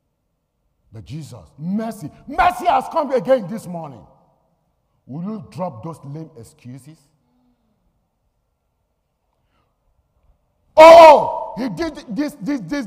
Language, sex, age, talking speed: English, male, 50-69, 100 wpm